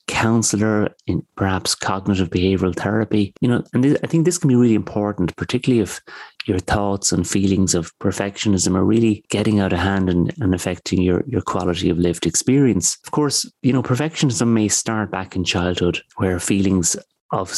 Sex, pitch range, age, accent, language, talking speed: male, 90-110 Hz, 30-49, Irish, English, 180 wpm